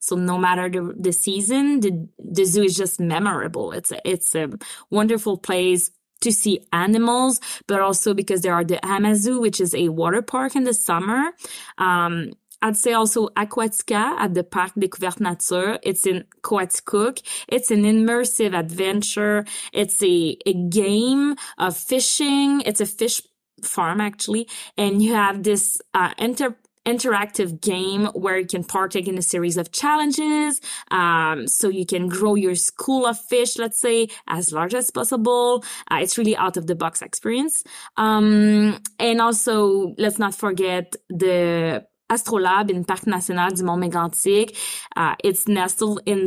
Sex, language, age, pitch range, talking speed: female, English, 20-39, 180-230 Hz, 160 wpm